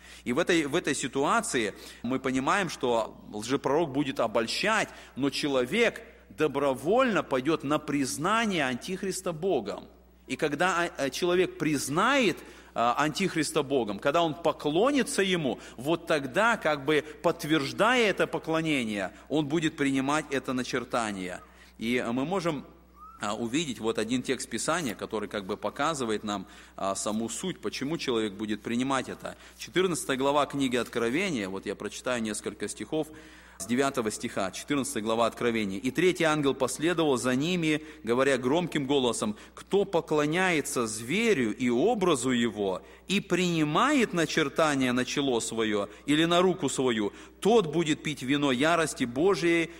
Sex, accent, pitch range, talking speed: male, native, 125-165 Hz, 130 wpm